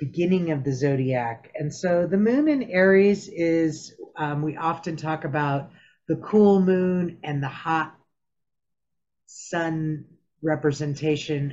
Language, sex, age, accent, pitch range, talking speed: English, female, 40-59, American, 135-170 Hz, 125 wpm